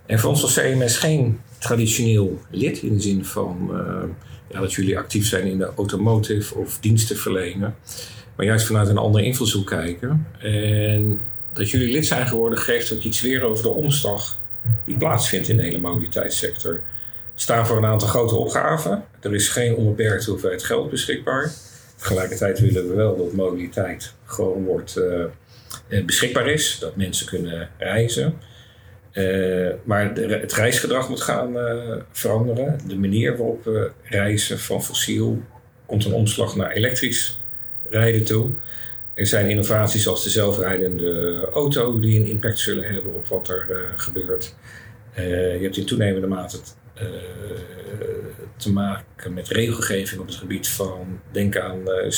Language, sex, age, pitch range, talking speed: English, male, 50-69, 100-115 Hz, 155 wpm